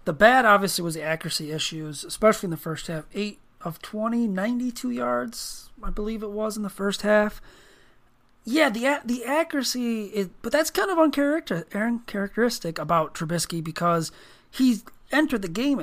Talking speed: 165 wpm